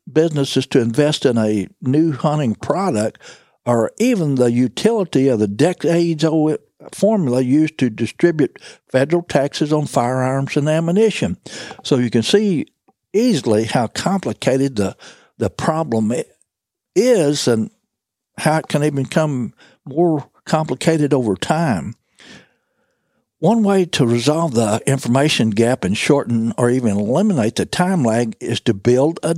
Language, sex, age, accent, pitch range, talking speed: English, male, 60-79, American, 120-160 Hz, 135 wpm